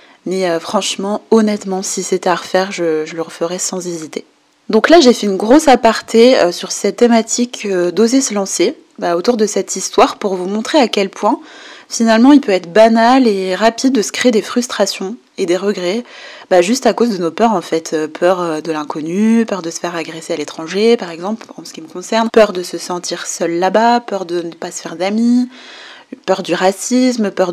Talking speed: 205 wpm